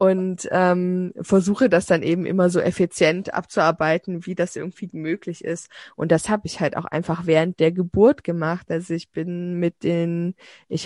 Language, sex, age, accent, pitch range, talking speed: German, female, 20-39, German, 165-190 Hz, 175 wpm